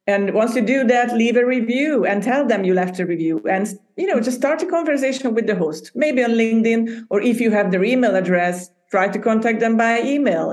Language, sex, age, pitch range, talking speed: English, female, 50-69, 185-225 Hz, 235 wpm